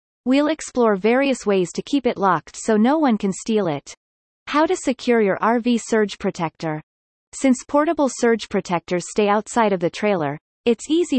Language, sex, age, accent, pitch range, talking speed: English, female, 30-49, American, 185-255 Hz, 170 wpm